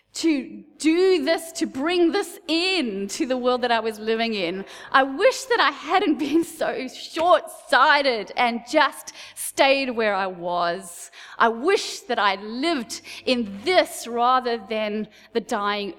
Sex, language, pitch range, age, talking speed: female, English, 225-320 Hz, 20-39, 150 wpm